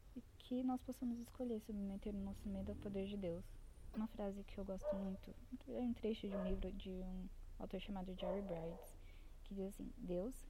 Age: 10-29